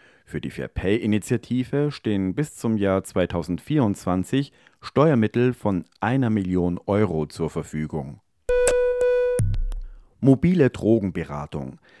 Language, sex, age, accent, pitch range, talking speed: German, male, 40-59, German, 90-130 Hz, 85 wpm